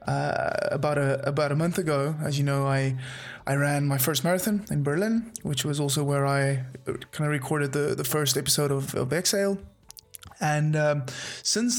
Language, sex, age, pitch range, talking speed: English, male, 20-39, 140-155 Hz, 185 wpm